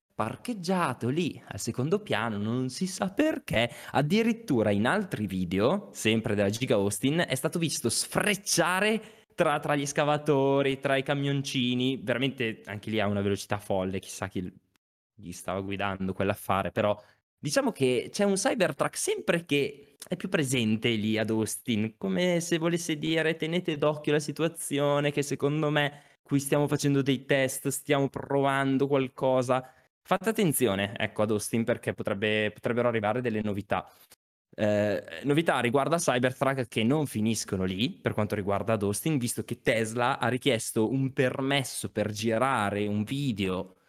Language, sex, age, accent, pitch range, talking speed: Italian, male, 20-39, native, 105-145 Hz, 150 wpm